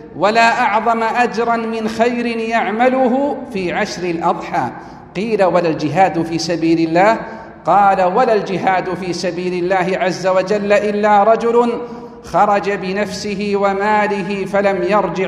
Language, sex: Arabic, male